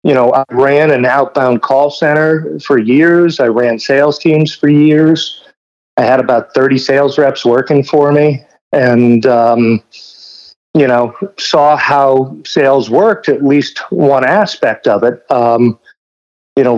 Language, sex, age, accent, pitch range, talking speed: English, male, 50-69, American, 115-145 Hz, 150 wpm